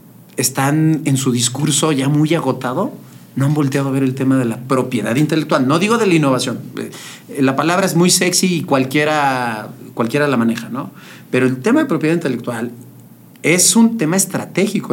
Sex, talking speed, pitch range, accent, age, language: male, 175 wpm, 135-175 Hz, Mexican, 40-59, Spanish